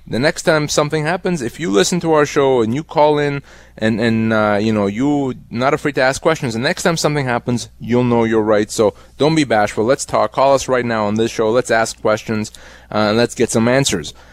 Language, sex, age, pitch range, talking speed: English, male, 30-49, 110-140 Hz, 240 wpm